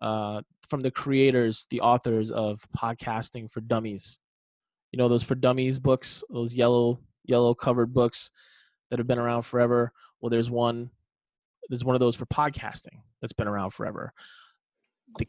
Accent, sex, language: American, male, English